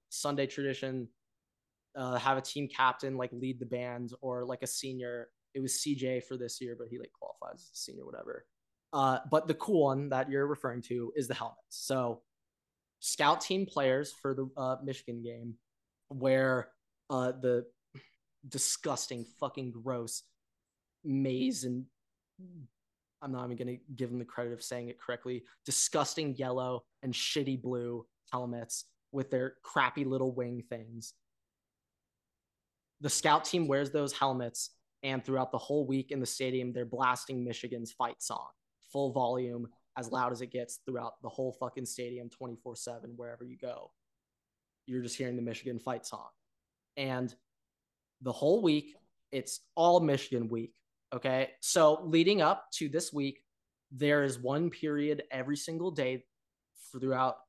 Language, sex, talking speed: English, male, 155 wpm